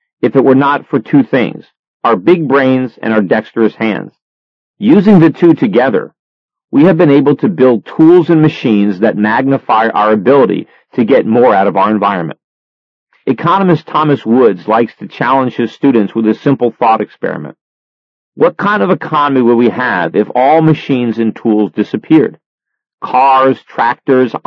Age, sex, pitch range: 40-59, male, 115-155 Hz